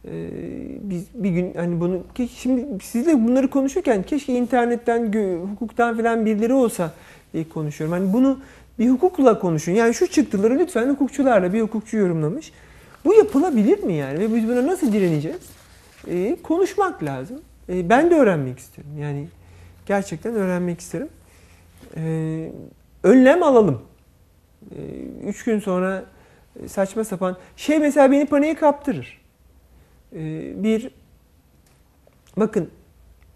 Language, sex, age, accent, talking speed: Turkish, male, 40-59, native, 120 wpm